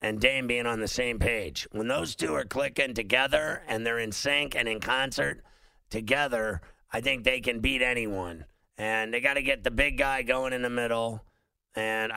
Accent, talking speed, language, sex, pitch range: American, 195 wpm, English, male, 110-130 Hz